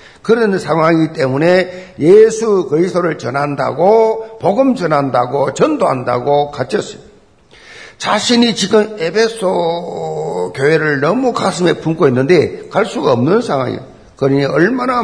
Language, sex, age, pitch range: Korean, male, 50-69, 145-225 Hz